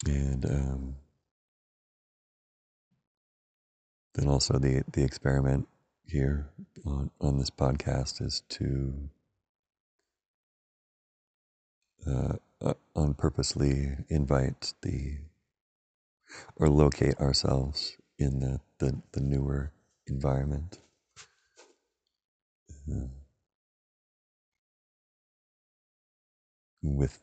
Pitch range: 70-75 Hz